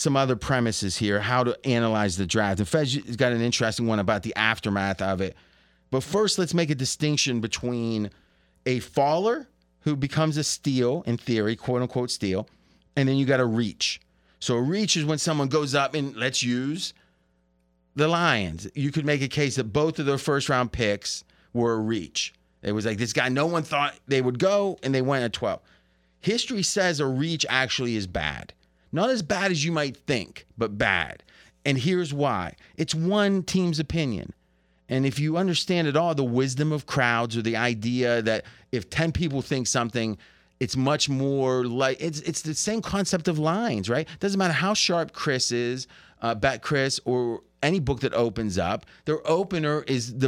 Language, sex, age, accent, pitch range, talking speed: English, male, 30-49, American, 110-155 Hz, 190 wpm